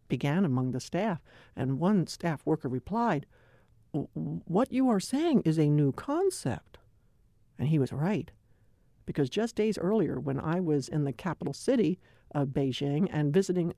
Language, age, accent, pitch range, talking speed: English, 60-79, American, 130-220 Hz, 155 wpm